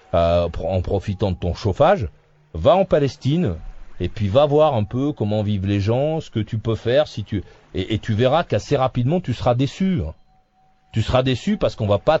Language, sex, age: French, male, 40-59